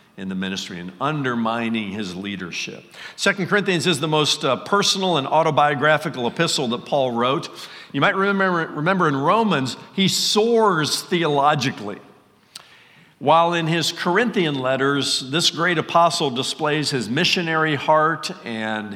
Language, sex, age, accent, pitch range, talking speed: English, male, 50-69, American, 135-175 Hz, 135 wpm